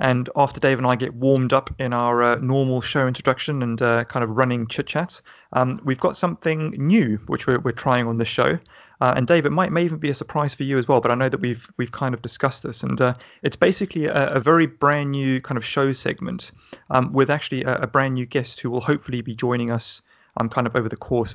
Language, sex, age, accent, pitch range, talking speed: English, male, 30-49, British, 120-135 Hz, 255 wpm